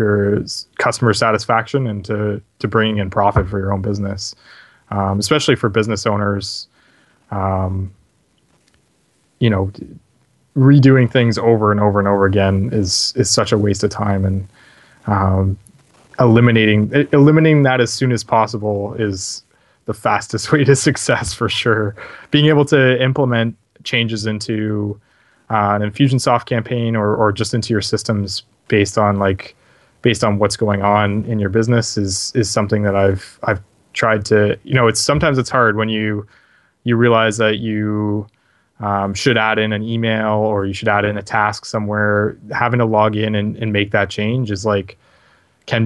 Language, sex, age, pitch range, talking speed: English, male, 20-39, 100-115 Hz, 165 wpm